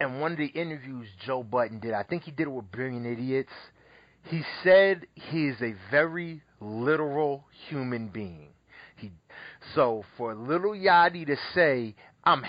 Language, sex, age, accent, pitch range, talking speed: English, male, 30-49, American, 115-155 Hz, 155 wpm